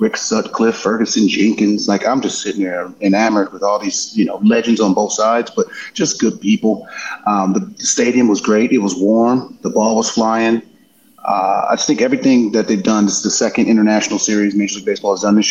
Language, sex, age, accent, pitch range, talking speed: English, male, 30-49, American, 100-120 Hz, 210 wpm